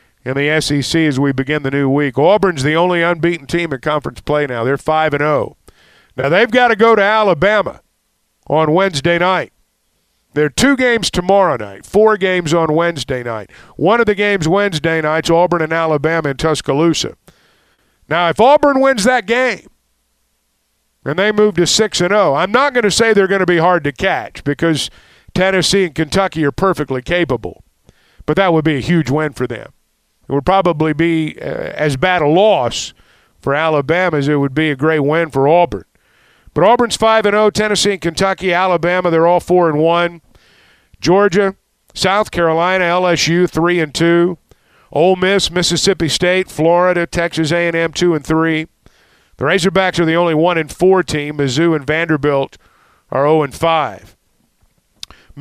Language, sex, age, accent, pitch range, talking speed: English, male, 50-69, American, 150-185 Hz, 160 wpm